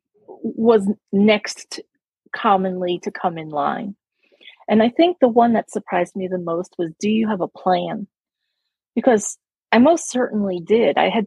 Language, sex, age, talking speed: English, female, 30-49, 160 wpm